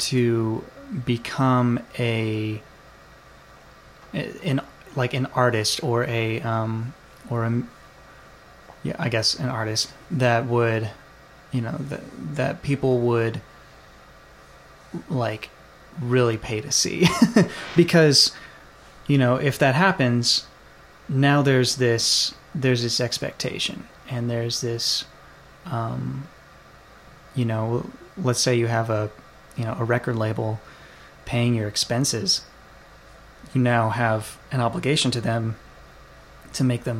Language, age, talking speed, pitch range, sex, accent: English, 20-39, 115 wpm, 115-130 Hz, male, American